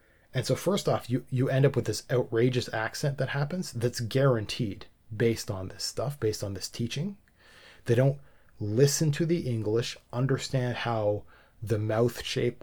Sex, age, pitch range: male, 30-49, 110-130 Hz